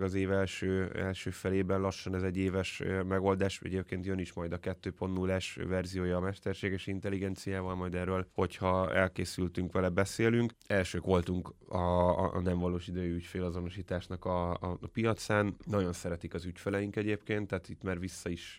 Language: Hungarian